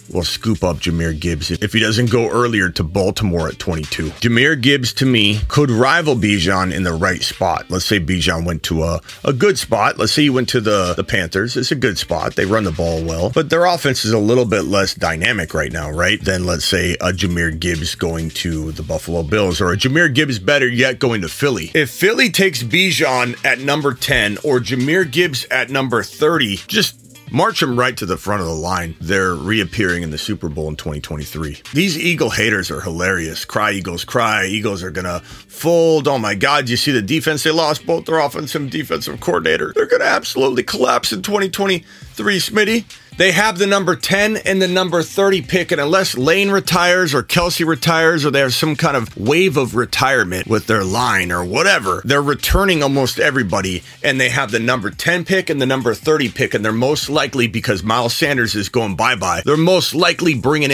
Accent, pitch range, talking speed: American, 95-155 Hz, 210 wpm